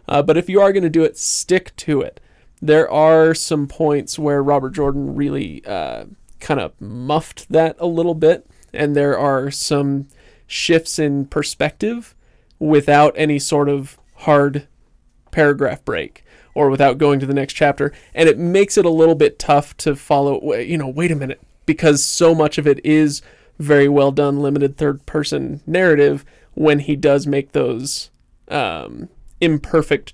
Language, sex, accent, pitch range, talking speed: English, male, American, 140-155 Hz, 165 wpm